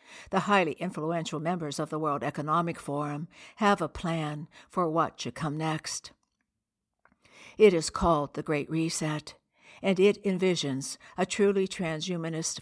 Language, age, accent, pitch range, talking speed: English, 60-79, American, 155-185 Hz, 140 wpm